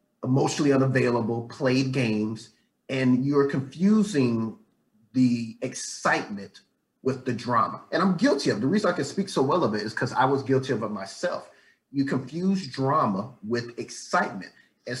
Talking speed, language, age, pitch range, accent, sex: 155 wpm, English, 30-49, 115-140 Hz, American, male